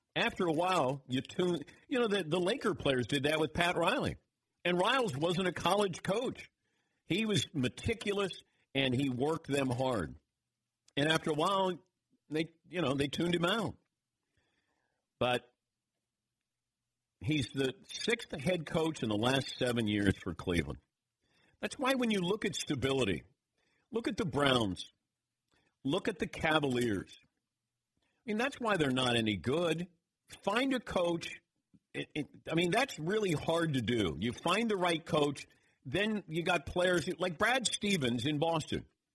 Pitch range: 130-185 Hz